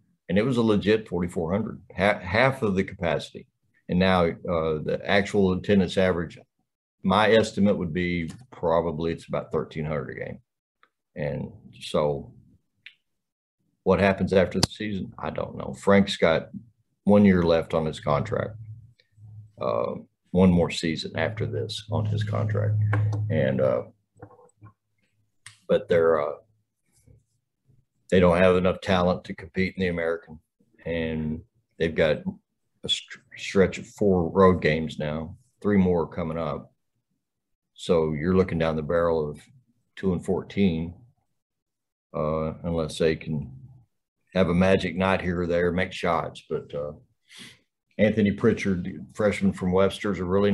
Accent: American